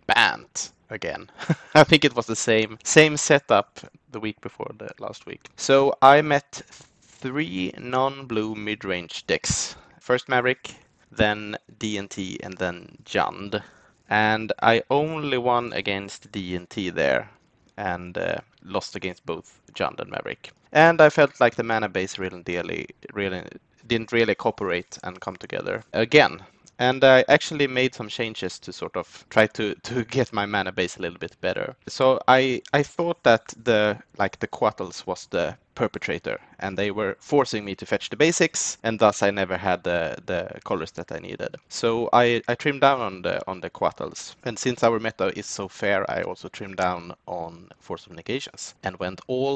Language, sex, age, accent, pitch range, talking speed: English, male, 20-39, Norwegian, 100-135 Hz, 170 wpm